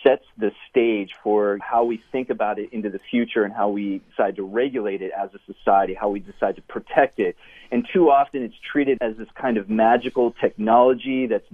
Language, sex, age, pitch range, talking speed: English, male, 40-59, 105-130 Hz, 210 wpm